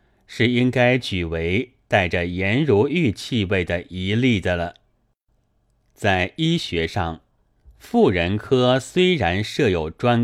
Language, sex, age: Chinese, male, 30-49